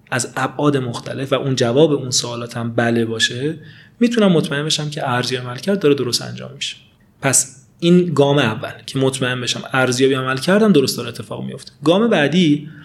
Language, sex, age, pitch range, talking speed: Persian, male, 30-49, 125-170 Hz, 170 wpm